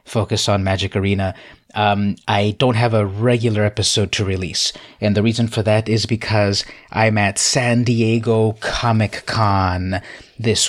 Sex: male